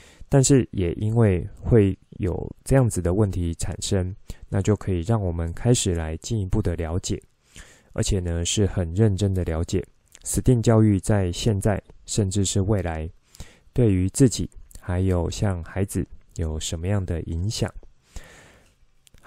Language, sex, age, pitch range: Chinese, male, 20-39, 85-110 Hz